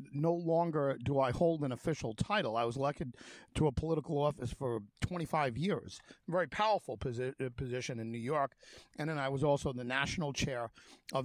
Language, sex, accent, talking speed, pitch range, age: English, male, American, 185 wpm, 120-160 Hz, 50-69